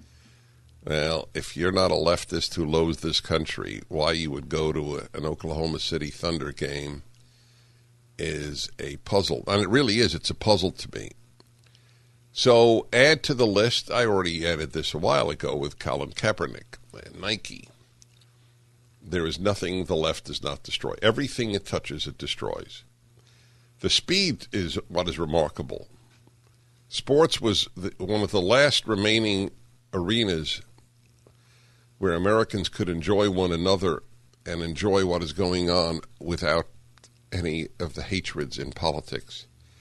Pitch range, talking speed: 90-120 Hz, 145 wpm